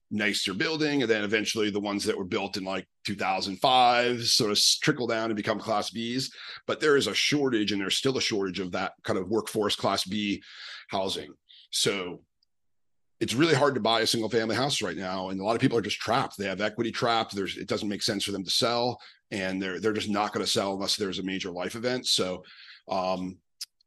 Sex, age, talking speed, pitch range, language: male, 40-59, 220 wpm, 95-110 Hz, English